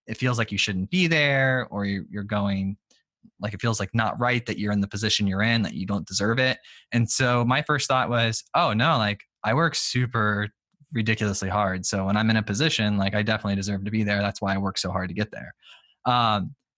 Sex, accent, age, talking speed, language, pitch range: male, American, 20-39, 235 wpm, English, 105-130 Hz